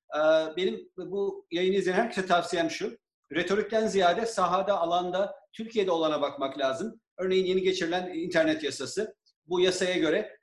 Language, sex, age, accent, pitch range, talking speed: Turkish, male, 40-59, native, 155-205 Hz, 130 wpm